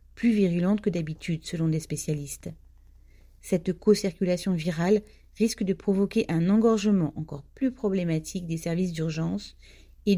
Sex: female